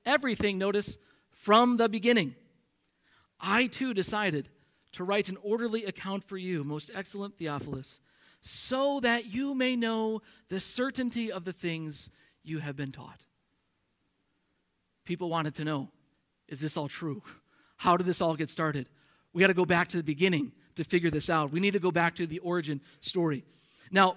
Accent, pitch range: American, 160-215 Hz